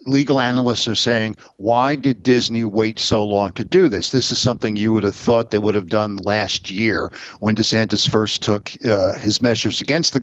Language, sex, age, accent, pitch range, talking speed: English, male, 50-69, American, 110-130 Hz, 205 wpm